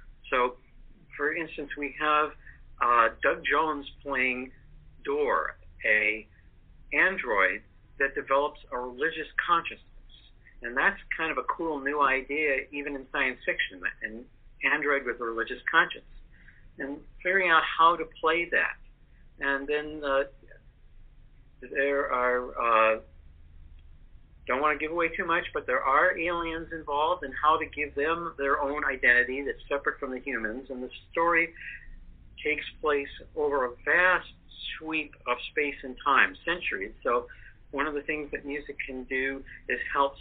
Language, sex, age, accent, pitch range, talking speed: English, male, 50-69, American, 125-150 Hz, 145 wpm